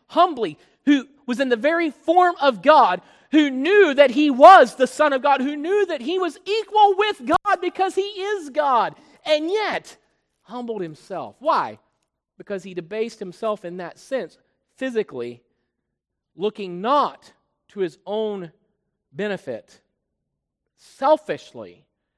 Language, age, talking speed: English, 40-59, 135 wpm